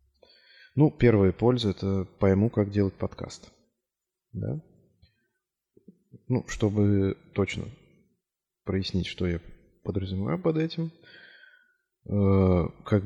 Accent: native